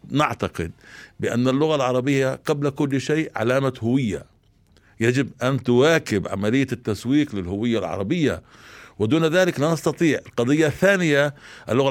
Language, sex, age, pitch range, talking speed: Arabic, male, 60-79, 105-145 Hz, 115 wpm